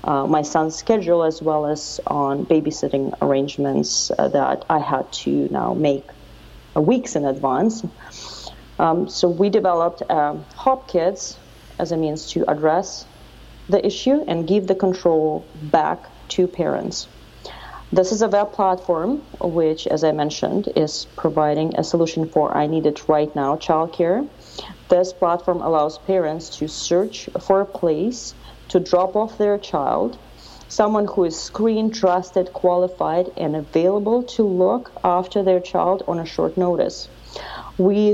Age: 40-59